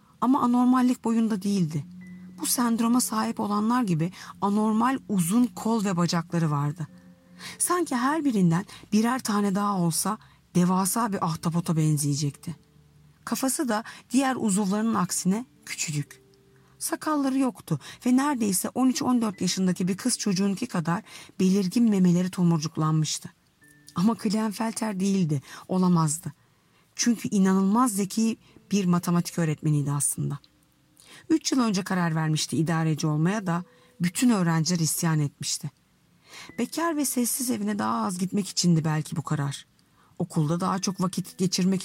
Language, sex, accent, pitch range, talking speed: Turkish, female, native, 165-225 Hz, 120 wpm